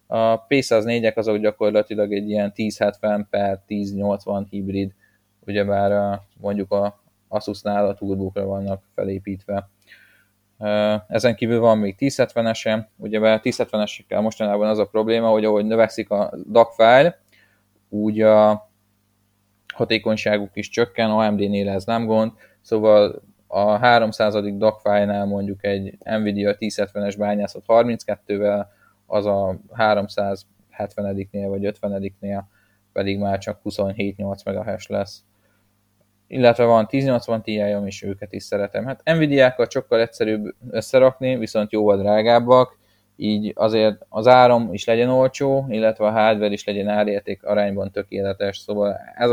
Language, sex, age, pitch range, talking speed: Hungarian, male, 20-39, 100-110 Hz, 120 wpm